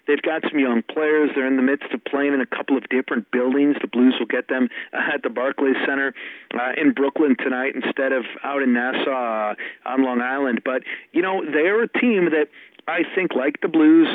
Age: 40-59